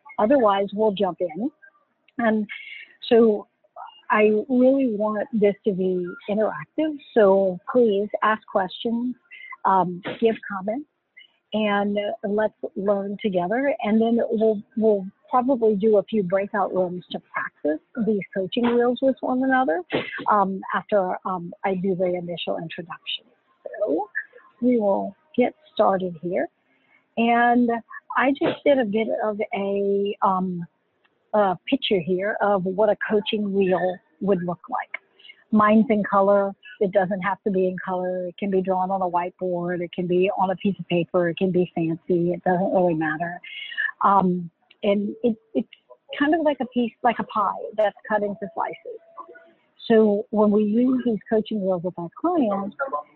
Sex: female